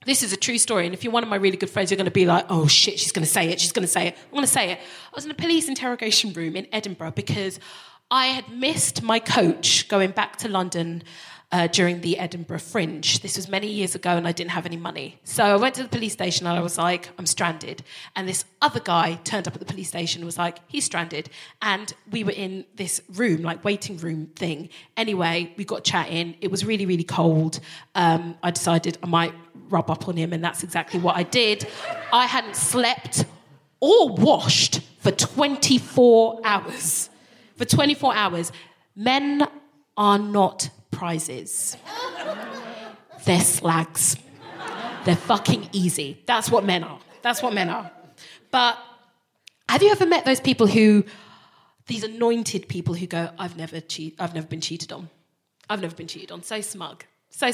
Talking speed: 200 wpm